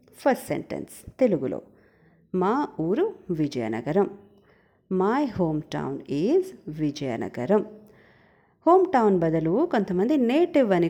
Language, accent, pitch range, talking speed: Telugu, native, 170-265 Hz, 95 wpm